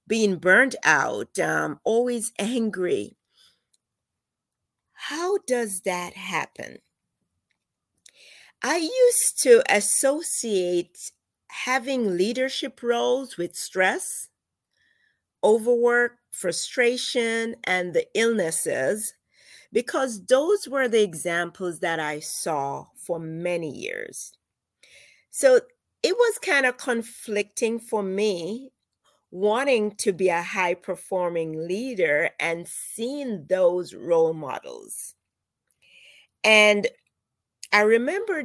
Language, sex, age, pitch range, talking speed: English, female, 40-59, 180-260 Hz, 90 wpm